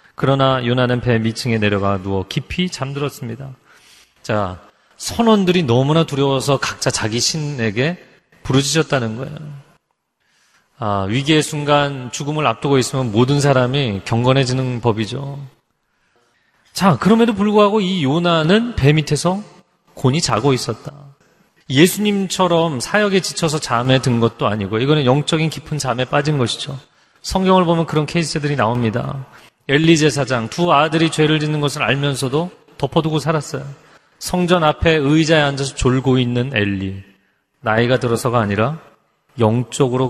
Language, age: Korean, 30-49